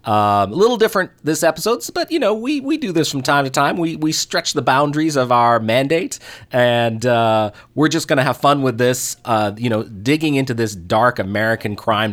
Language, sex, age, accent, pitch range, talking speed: English, male, 30-49, American, 105-130 Hz, 220 wpm